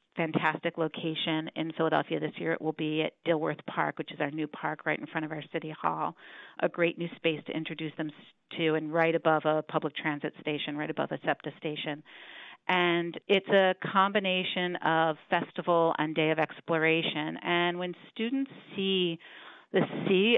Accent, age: American, 40-59